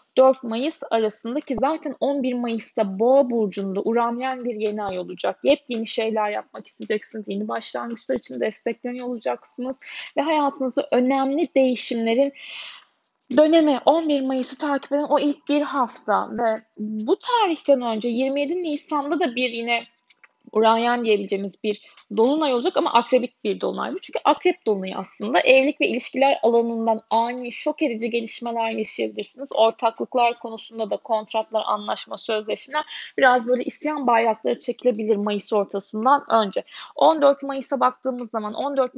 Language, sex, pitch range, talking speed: Turkish, female, 225-285 Hz, 130 wpm